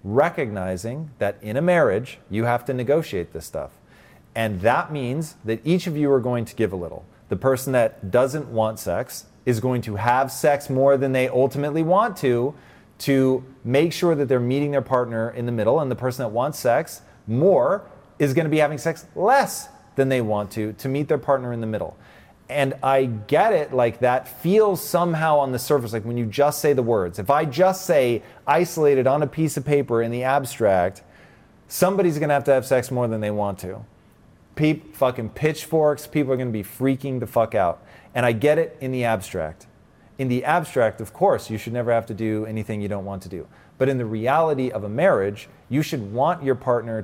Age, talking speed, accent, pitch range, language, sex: 30-49, 210 wpm, American, 115-145 Hz, English, male